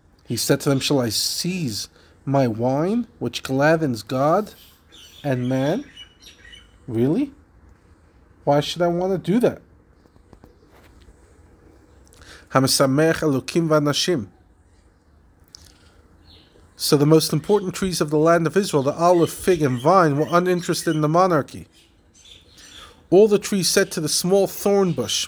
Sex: male